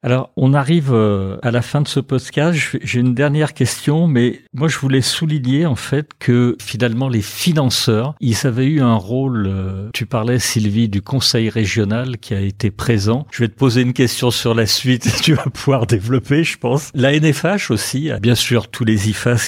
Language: French